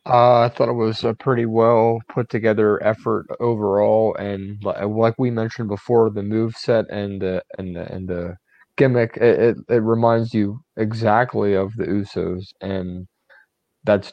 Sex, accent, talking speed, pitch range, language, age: male, American, 155 wpm, 100-115 Hz, English, 30-49